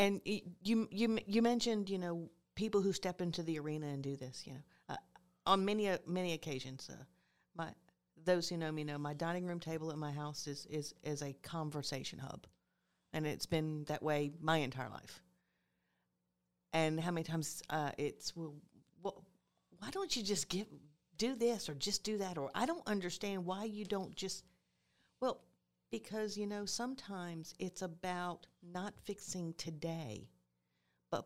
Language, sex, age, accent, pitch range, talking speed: English, female, 50-69, American, 135-180 Hz, 170 wpm